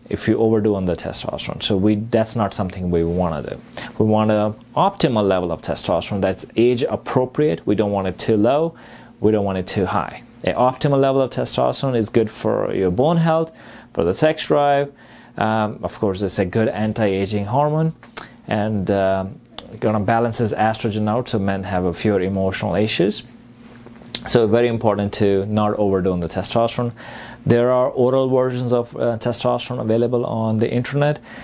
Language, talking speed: English, 175 wpm